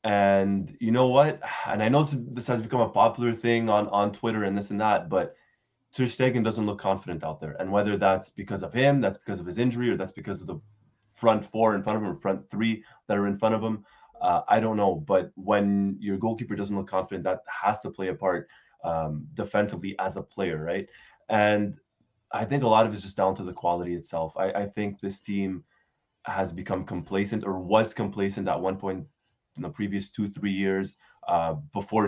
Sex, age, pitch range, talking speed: male, 20-39, 95-115 Hz, 220 wpm